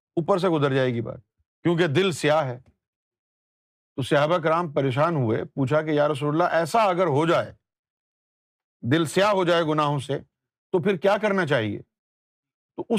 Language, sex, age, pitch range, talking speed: Urdu, male, 50-69, 145-205 Hz, 170 wpm